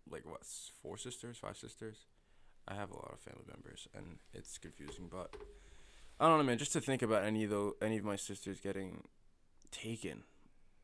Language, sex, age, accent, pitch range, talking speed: English, male, 20-39, American, 100-130 Hz, 185 wpm